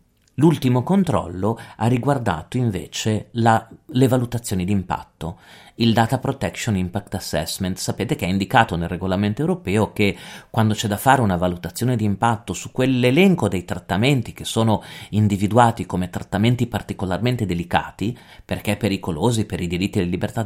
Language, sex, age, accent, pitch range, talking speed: Italian, male, 40-59, native, 95-120 Hz, 140 wpm